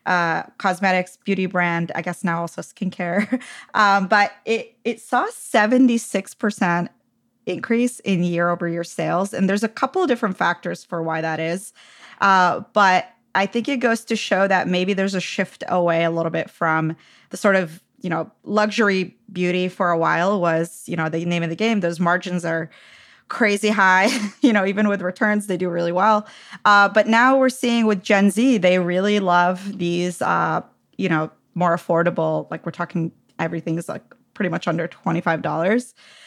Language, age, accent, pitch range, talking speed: English, 20-39, American, 175-215 Hz, 180 wpm